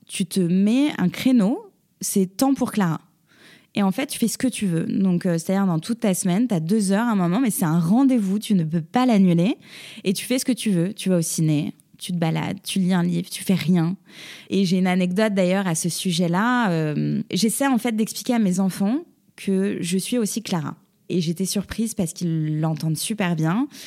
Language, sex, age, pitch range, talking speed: English, female, 20-39, 175-215 Hz, 225 wpm